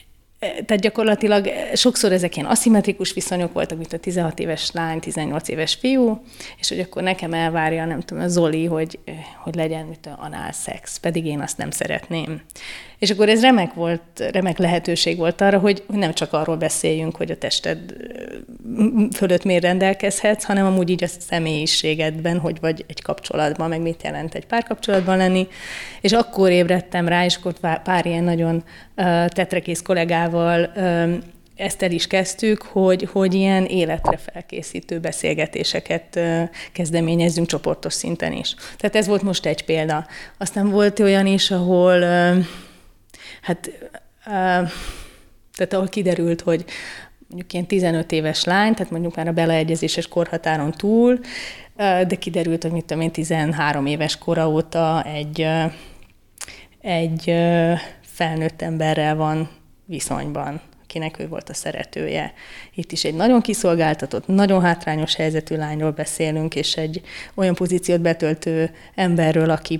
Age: 30-49